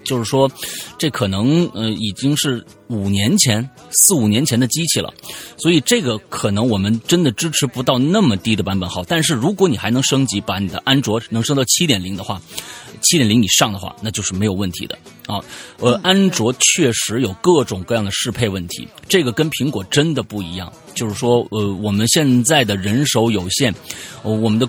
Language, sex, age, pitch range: Chinese, male, 30-49, 105-150 Hz